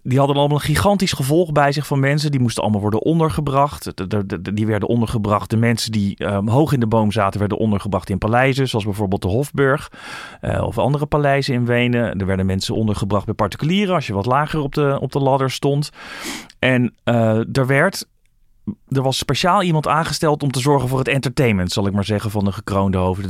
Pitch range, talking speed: 110-145 Hz, 200 wpm